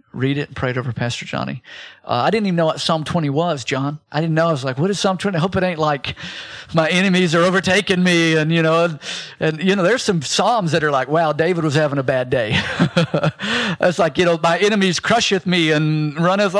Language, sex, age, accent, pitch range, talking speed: English, male, 50-69, American, 135-175 Hz, 245 wpm